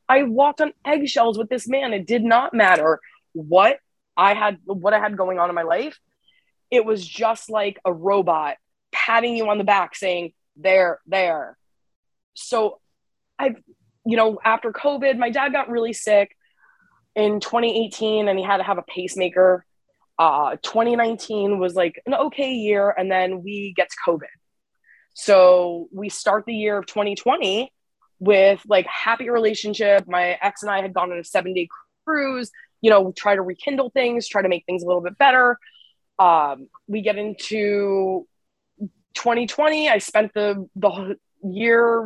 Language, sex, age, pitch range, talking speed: English, female, 20-39, 190-235 Hz, 165 wpm